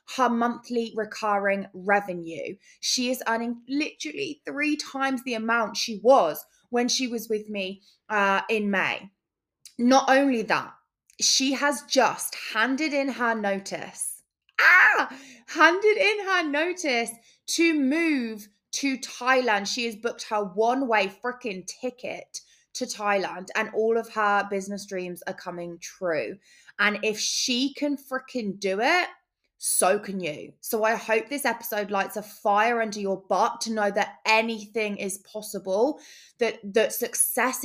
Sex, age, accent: female, 20-39, British